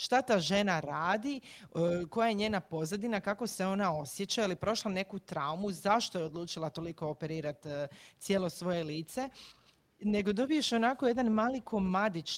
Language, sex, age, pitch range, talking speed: Croatian, female, 40-59, 155-210 Hz, 145 wpm